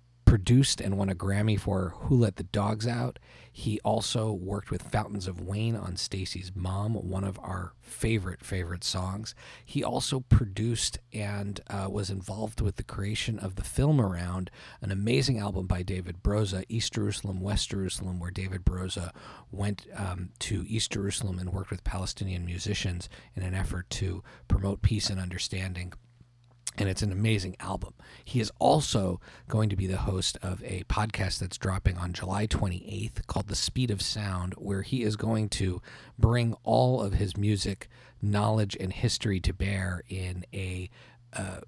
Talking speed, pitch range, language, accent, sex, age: 165 wpm, 95-110 Hz, English, American, male, 40-59